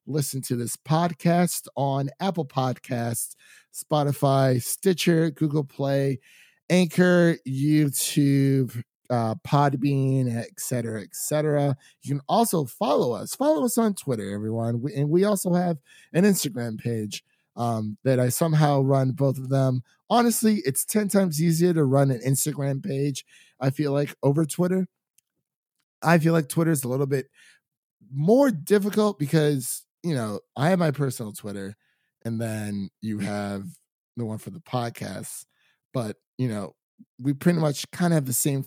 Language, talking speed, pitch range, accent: English, 150 wpm, 120-165 Hz, American